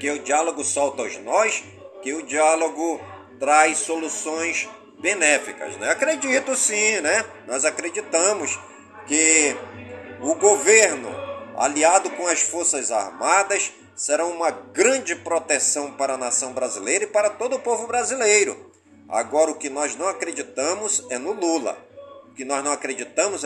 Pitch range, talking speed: 145-220 Hz, 140 wpm